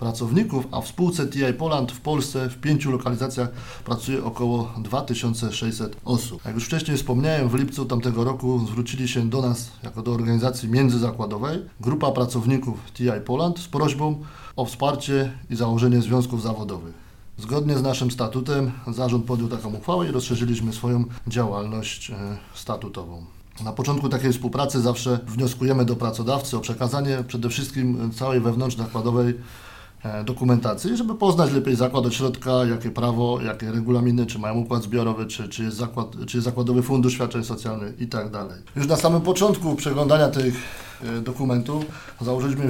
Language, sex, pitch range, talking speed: Polish, male, 115-130 Hz, 140 wpm